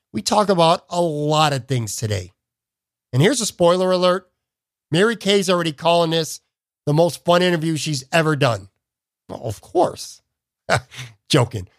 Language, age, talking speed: English, 50-69, 145 wpm